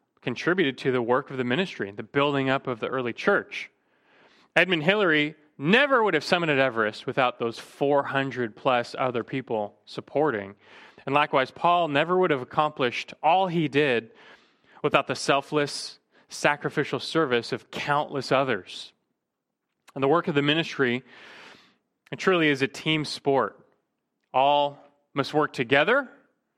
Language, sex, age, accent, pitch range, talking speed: English, male, 30-49, American, 135-175 Hz, 140 wpm